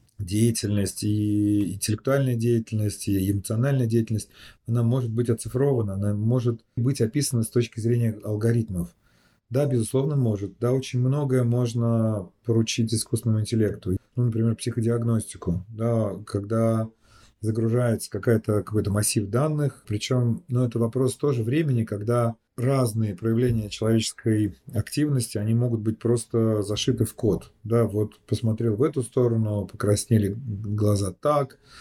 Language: Russian